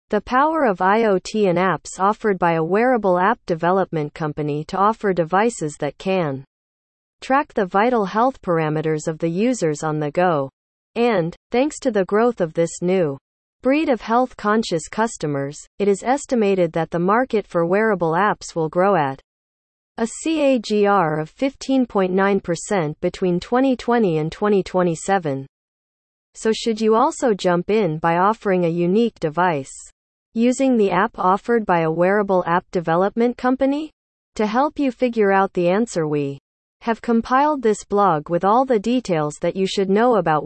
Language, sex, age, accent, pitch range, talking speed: English, female, 40-59, American, 165-230 Hz, 155 wpm